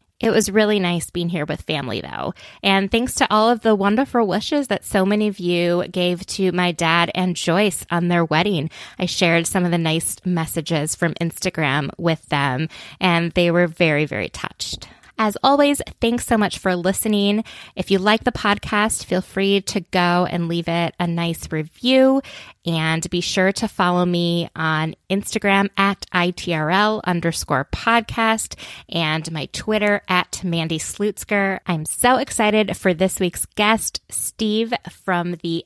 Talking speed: 165 wpm